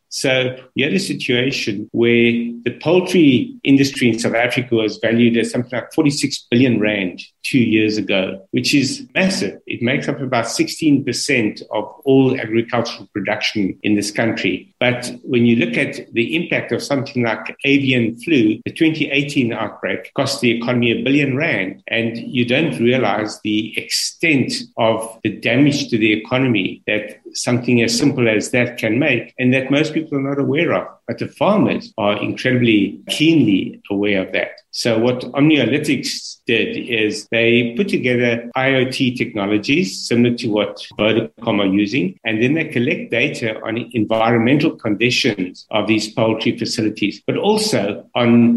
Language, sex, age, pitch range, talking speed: English, male, 50-69, 110-135 Hz, 155 wpm